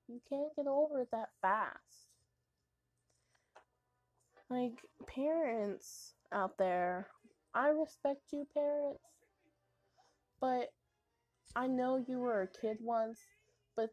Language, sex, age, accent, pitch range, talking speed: English, female, 20-39, American, 205-265 Hz, 105 wpm